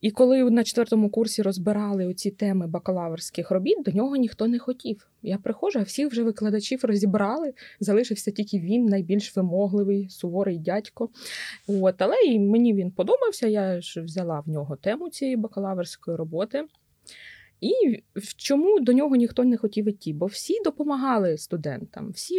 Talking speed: 150 wpm